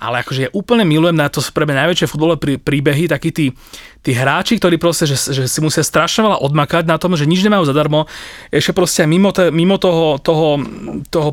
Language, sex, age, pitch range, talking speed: Slovak, male, 30-49, 145-175 Hz, 195 wpm